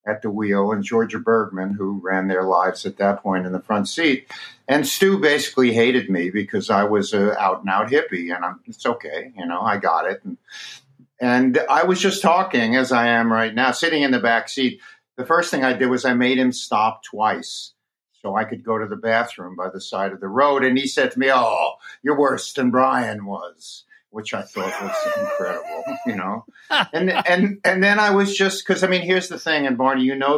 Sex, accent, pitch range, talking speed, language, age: male, American, 105-150 Hz, 220 wpm, English, 50-69